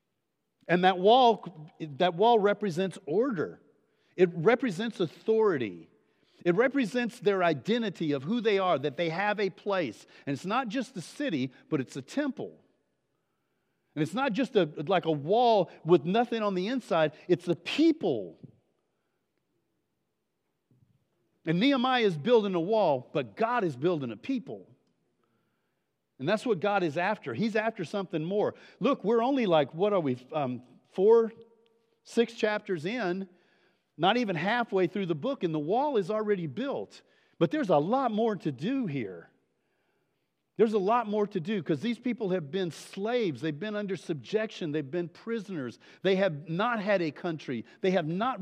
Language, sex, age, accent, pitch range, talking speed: English, male, 50-69, American, 170-230 Hz, 160 wpm